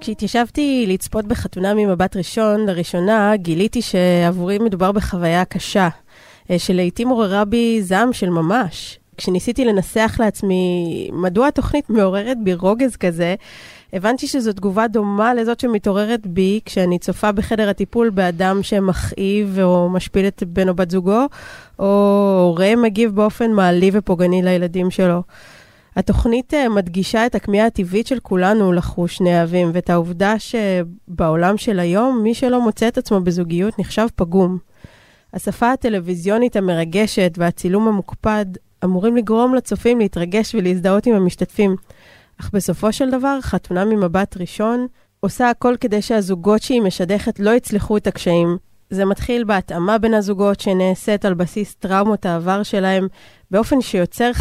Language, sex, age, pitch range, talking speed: Hebrew, female, 20-39, 185-220 Hz, 130 wpm